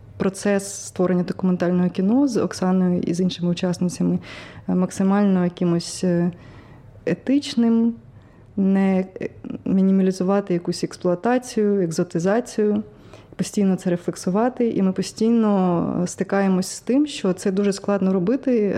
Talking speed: 100 wpm